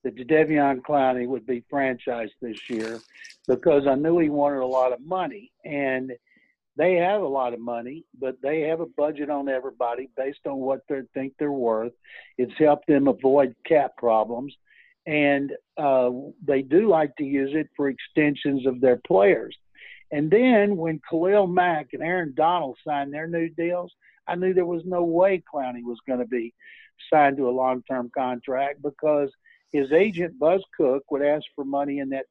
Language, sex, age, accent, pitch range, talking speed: English, male, 60-79, American, 135-165 Hz, 180 wpm